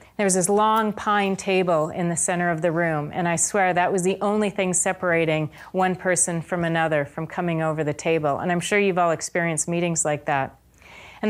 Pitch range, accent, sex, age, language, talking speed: 165-200 Hz, American, female, 30-49, English, 210 wpm